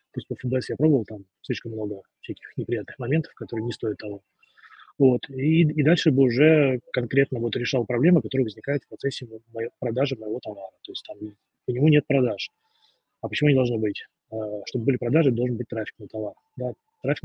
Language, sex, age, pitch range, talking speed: Russian, male, 20-39, 120-145 Hz, 190 wpm